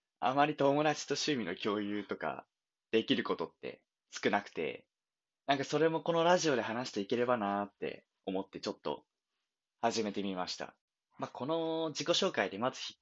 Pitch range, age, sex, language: 110-160 Hz, 20-39, male, Japanese